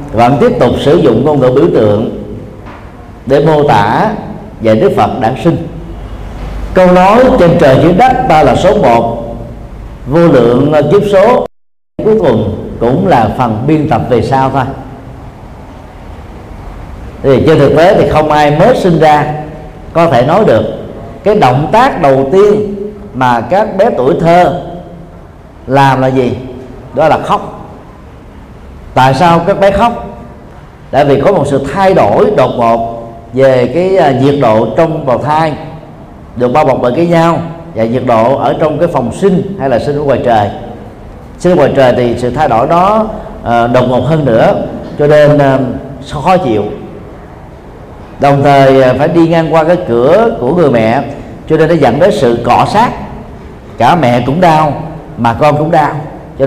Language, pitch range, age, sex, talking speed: Vietnamese, 125-165 Hz, 50-69, male, 165 wpm